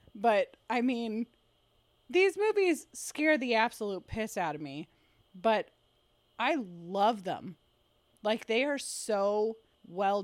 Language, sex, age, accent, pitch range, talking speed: English, female, 20-39, American, 180-225 Hz, 125 wpm